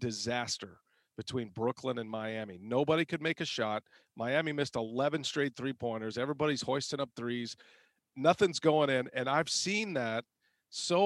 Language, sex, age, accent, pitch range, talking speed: English, male, 40-59, American, 120-155 Hz, 145 wpm